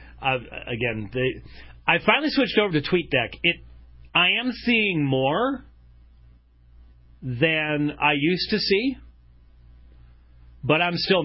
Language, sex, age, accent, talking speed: English, male, 40-59, American, 110 wpm